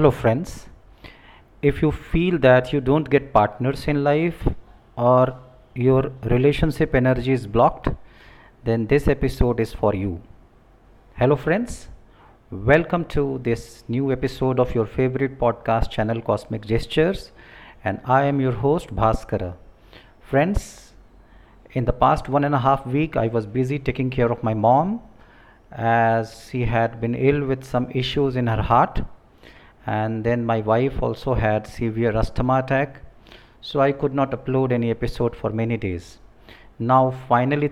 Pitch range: 115-135 Hz